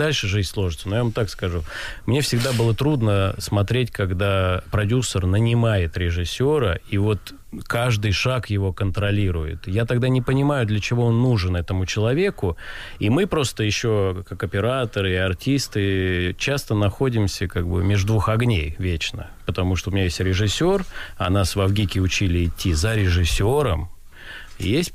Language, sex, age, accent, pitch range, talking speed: Russian, male, 20-39, native, 90-115 Hz, 155 wpm